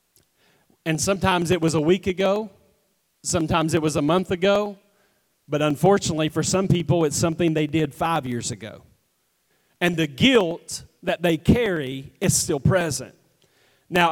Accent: American